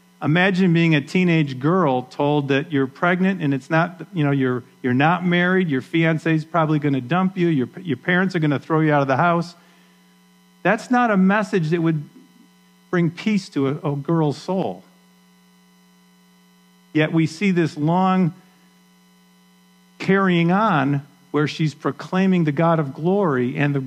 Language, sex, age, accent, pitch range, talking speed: English, male, 50-69, American, 130-175 Hz, 170 wpm